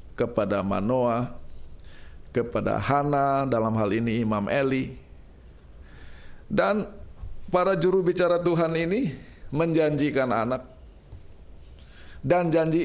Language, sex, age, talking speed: Indonesian, male, 50-69, 90 wpm